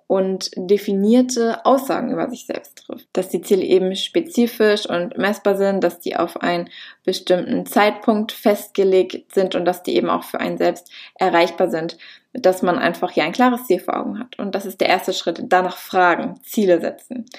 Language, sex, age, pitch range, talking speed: German, female, 20-39, 180-215 Hz, 185 wpm